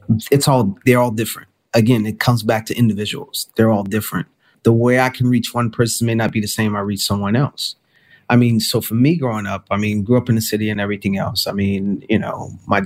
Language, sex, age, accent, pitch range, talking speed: English, male, 30-49, American, 100-115 Hz, 245 wpm